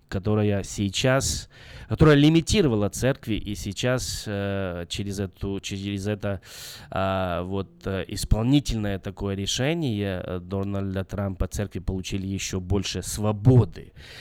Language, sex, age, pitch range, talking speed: Russian, male, 20-39, 100-130 Hz, 95 wpm